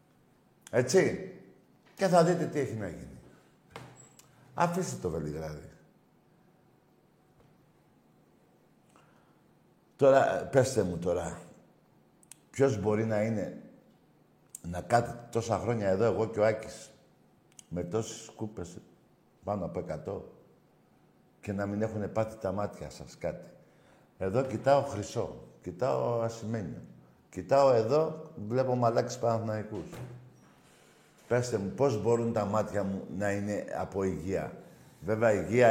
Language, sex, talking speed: Greek, male, 110 wpm